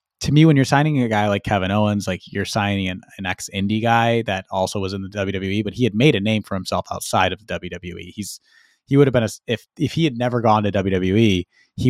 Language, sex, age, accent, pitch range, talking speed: English, male, 30-49, American, 95-115 Hz, 255 wpm